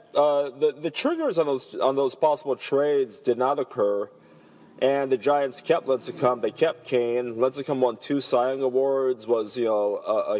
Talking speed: 180 wpm